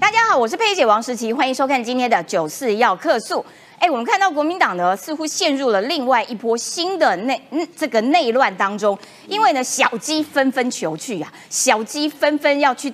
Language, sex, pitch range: Chinese, female, 235-355 Hz